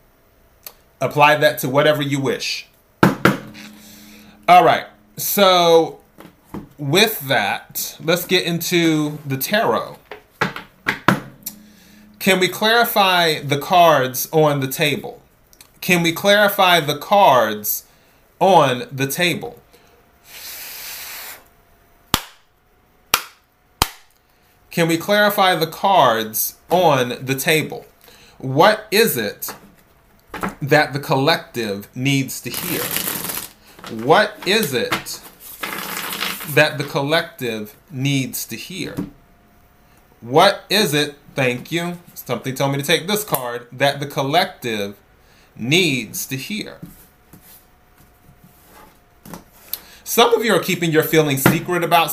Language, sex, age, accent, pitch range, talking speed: English, male, 30-49, American, 135-175 Hz, 100 wpm